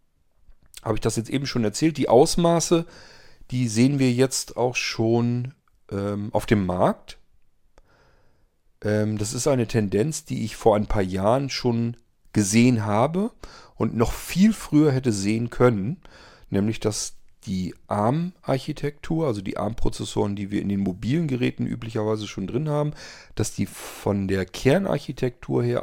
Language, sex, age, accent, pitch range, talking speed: German, male, 40-59, German, 100-130 Hz, 145 wpm